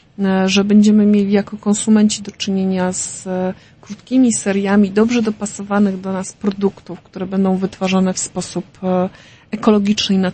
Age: 30-49